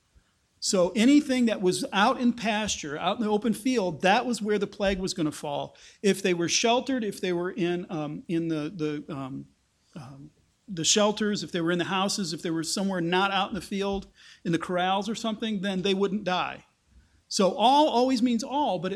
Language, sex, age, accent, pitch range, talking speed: English, male, 40-59, American, 165-215 Hz, 210 wpm